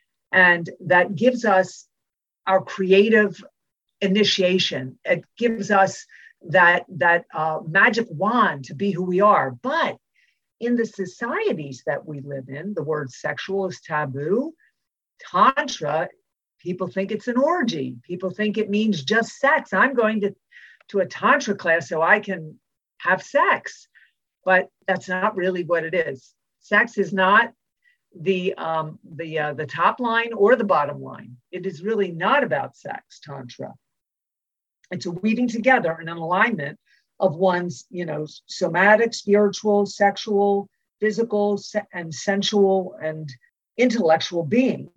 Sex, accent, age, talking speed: female, American, 50-69, 140 wpm